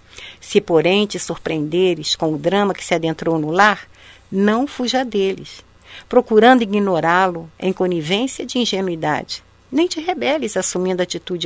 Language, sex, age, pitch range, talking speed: Portuguese, female, 50-69, 155-225 Hz, 135 wpm